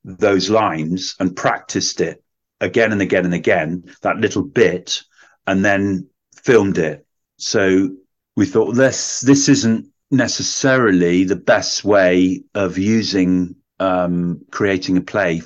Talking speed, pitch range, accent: 130 wpm, 90-110 Hz, British